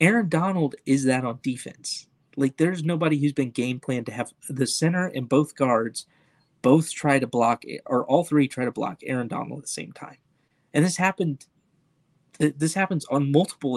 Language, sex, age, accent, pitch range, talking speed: English, male, 30-49, American, 125-155 Hz, 185 wpm